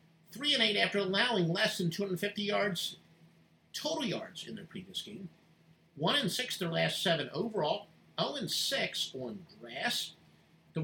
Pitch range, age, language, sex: 165-210 Hz, 50-69, English, male